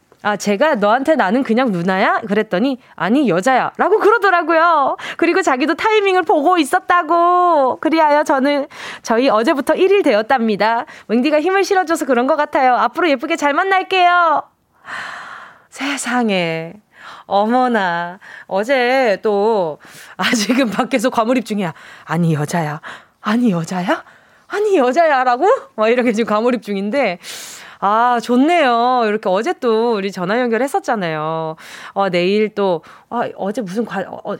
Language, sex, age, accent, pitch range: Korean, female, 20-39, native, 210-305 Hz